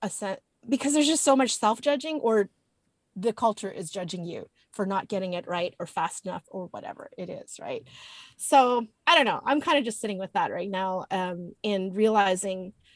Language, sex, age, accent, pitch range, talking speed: English, female, 30-49, American, 195-260 Hz, 195 wpm